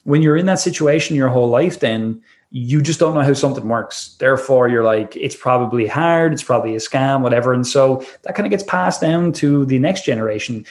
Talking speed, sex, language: 220 wpm, male, English